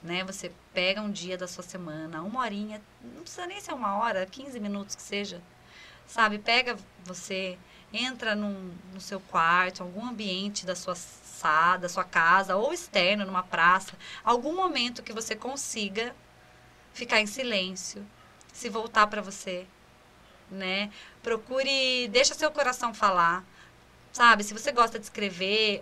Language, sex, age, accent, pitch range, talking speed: Portuguese, female, 20-39, Brazilian, 190-230 Hz, 145 wpm